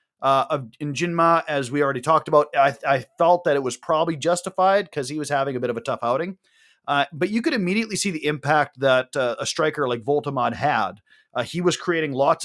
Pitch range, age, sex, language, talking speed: 140-195 Hz, 30-49, male, English, 220 wpm